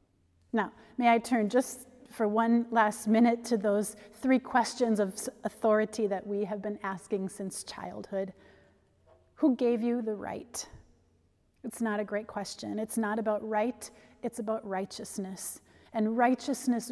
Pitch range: 200-245 Hz